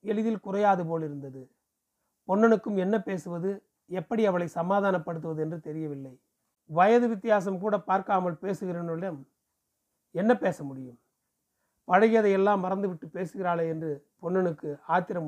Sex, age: male, 30-49